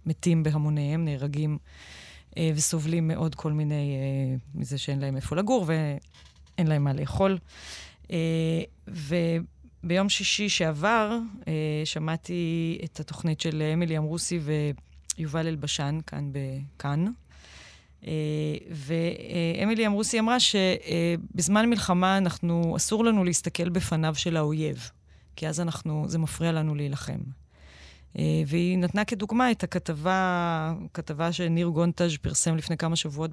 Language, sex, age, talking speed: Hebrew, female, 20-39, 115 wpm